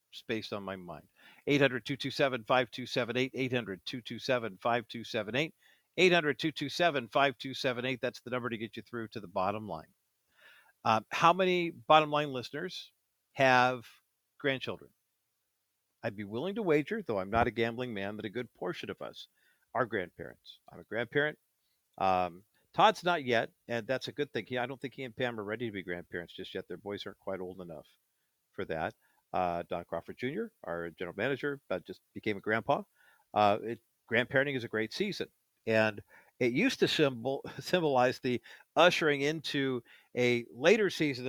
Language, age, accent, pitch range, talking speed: English, 50-69, American, 115-145 Hz, 160 wpm